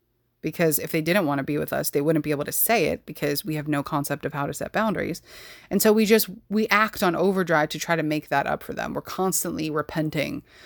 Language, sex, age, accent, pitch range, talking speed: English, female, 30-49, American, 150-190 Hz, 255 wpm